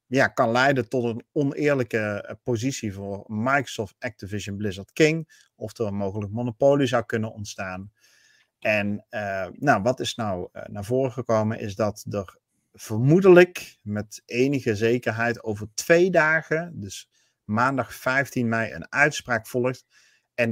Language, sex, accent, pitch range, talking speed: Dutch, male, Dutch, 110-130 Hz, 145 wpm